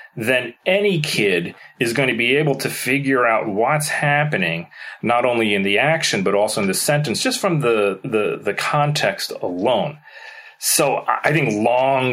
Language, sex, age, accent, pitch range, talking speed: English, male, 30-49, American, 100-145 Hz, 170 wpm